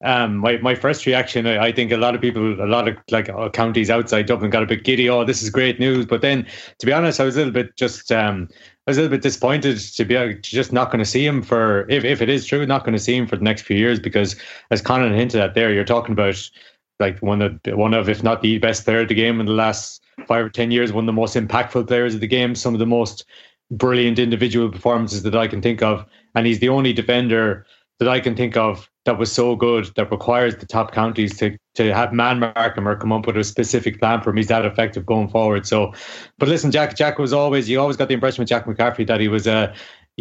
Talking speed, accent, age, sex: 270 wpm, Irish, 20-39, male